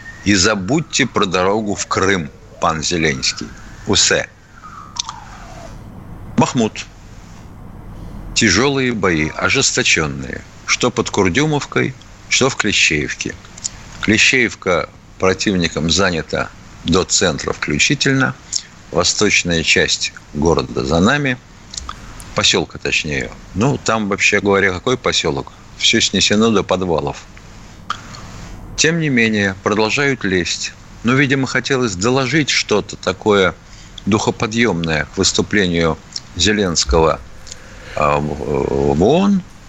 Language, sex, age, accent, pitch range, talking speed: Russian, male, 50-69, native, 95-125 Hz, 90 wpm